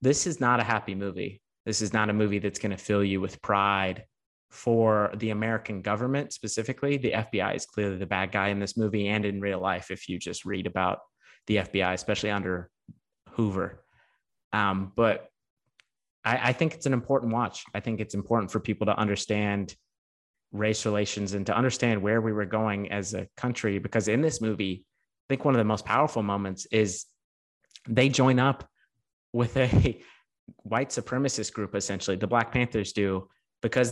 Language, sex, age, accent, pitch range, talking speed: English, male, 30-49, American, 100-115 Hz, 180 wpm